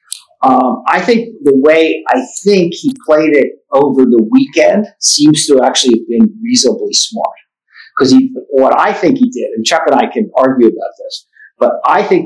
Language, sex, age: English, male, 50-69